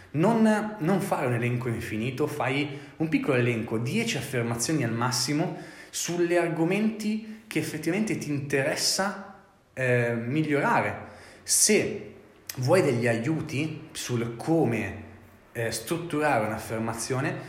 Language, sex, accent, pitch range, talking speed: Italian, male, native, 115-150 Hz, 105 wpm